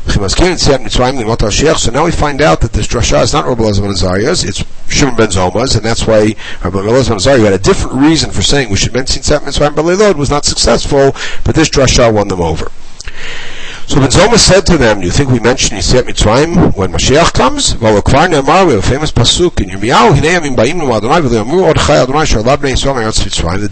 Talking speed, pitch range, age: 165 wpm, 105-155 Hz, 60-79